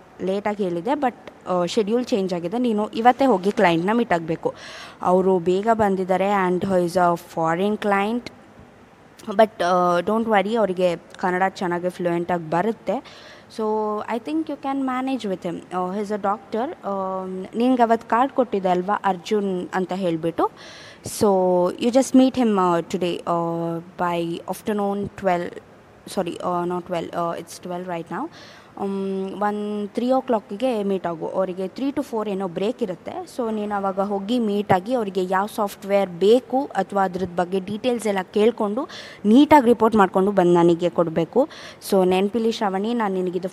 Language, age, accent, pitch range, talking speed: Kannada, 20-39, native, 180-225 Hz, 140 wpm